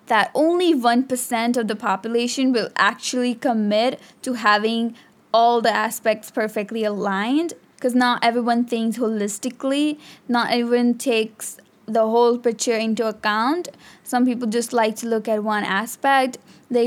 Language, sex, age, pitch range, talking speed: English, female, 10-29, 215-240 Hz, 140 wpm